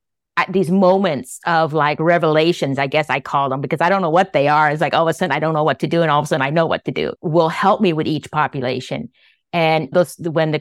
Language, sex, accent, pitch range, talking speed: English, female, American, 155-190 Hz, 285 wpm